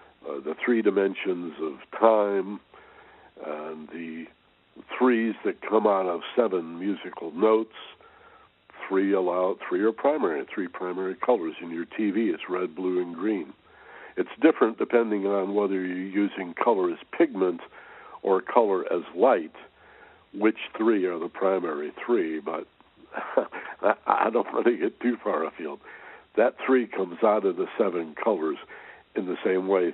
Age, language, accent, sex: 60-79, English, American, male